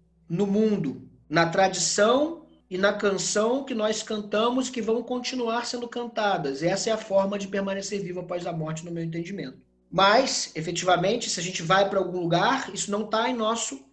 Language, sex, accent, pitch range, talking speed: Portuguese, male, Brazilian, 185-235 Hz, 180 wpm